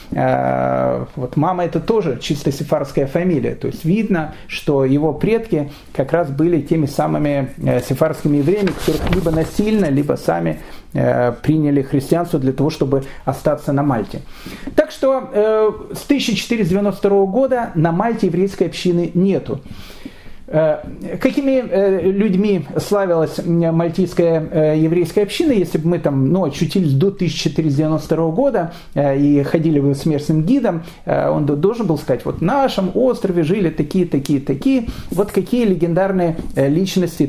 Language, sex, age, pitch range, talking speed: Russian, male, 40-59, 145-195 Hz, 125 wpm